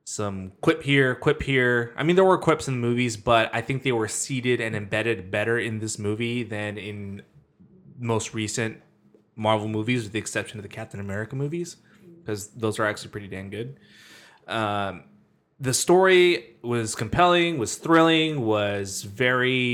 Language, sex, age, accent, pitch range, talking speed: English, male, 20-39, American, 105-135 Hz, 165 wpm